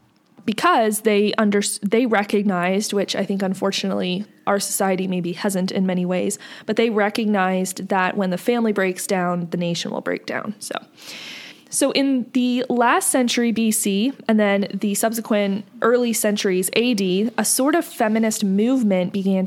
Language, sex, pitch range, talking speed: English, female, 195-230 Hz, 155 wpm